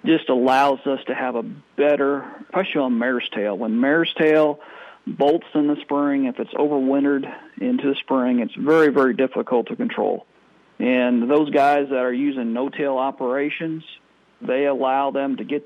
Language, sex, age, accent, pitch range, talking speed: English, male, 40-59, American, 130-160 Hz, 165 wpm